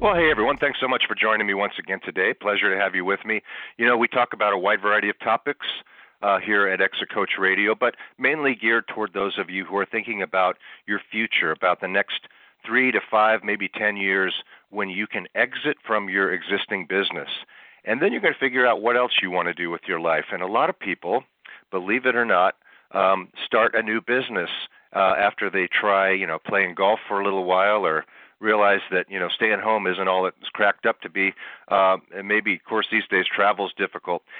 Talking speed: 225 wpm